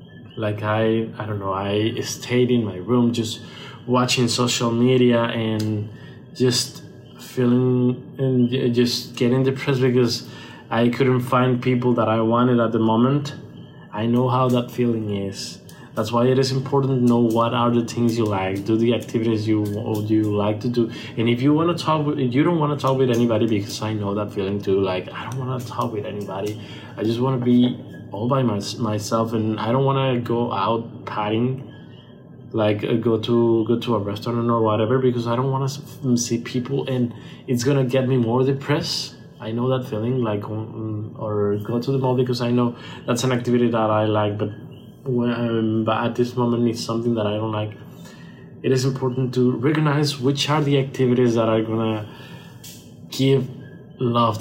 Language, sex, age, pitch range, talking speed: English, male, 20-39, 110-130 Hz, 190 wpm